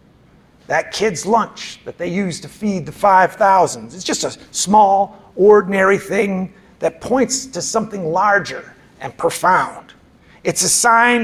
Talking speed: 140 wpm